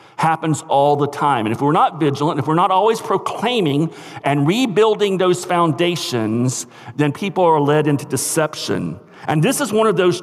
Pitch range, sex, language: 140-185 Hz, male, English